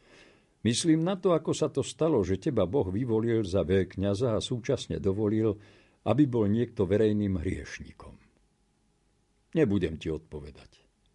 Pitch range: 90-120 Hz